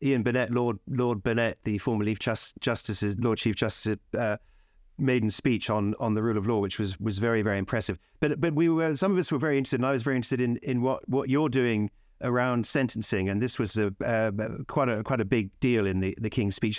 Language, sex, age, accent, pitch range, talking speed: English, male, 50-69, British, 105-130 Hz, 240 wpm